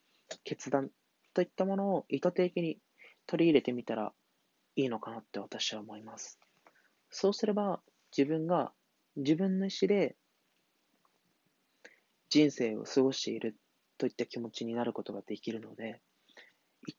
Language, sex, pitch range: Japanese, male, 120-160 Hz